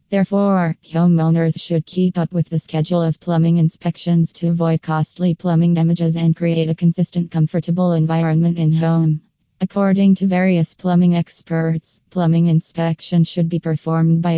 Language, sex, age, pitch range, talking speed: English, female, 20-39, 160-175 Hz, 145 wpm